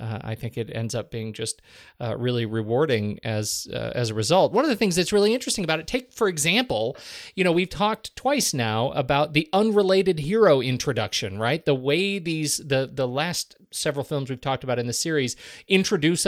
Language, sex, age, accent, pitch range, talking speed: English, male, 40-59, American, 120-170 Hz, 215 wpm